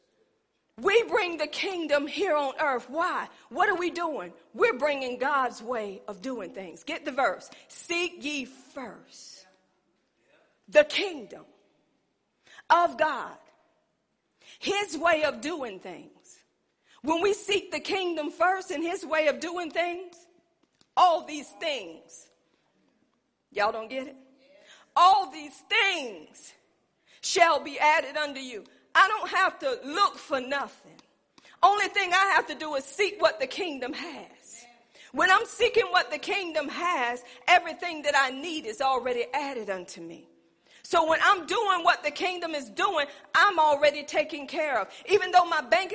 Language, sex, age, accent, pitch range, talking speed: English, female, 40-59, American, 280-365 Hz, 150 wpm